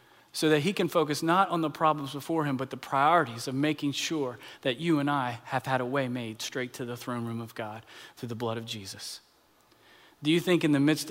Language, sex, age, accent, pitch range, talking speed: English, male, 40-59, American, 125-145 Hz, 240 wpm